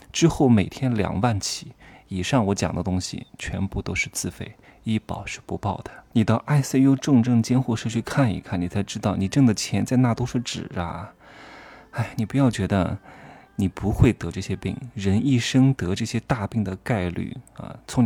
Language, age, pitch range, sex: Chinese, 20-39, 100-135 Hz, male